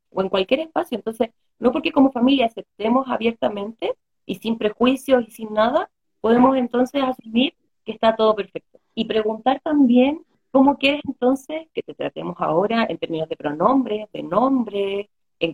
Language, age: Spanish, 30-49